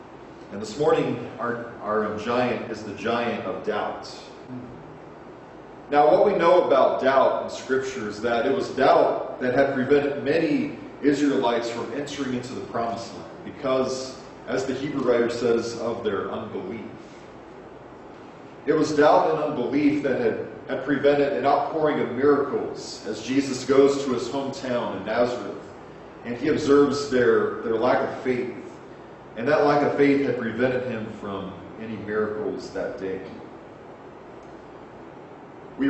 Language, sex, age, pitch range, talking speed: English, male, 40-59, 120-145 Hz, 145 wpm